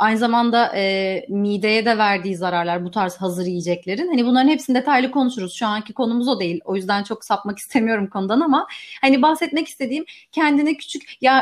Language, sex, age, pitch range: Turkish, female, 30-49, 210-270 Hz